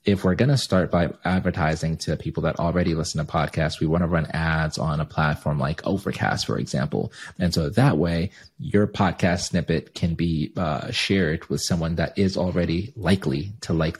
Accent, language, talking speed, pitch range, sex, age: American, English, 195 wpm, 85-100 Hz, male, 30-49